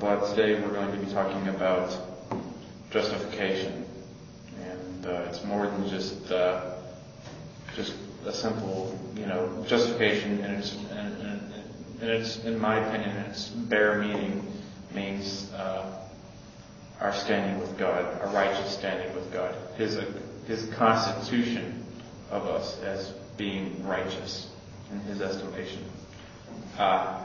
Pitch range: 95-105 Hz